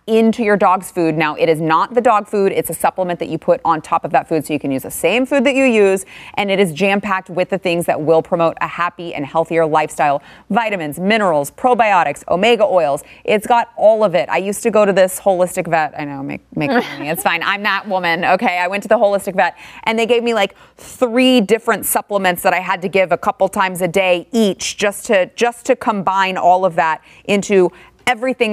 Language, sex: English, female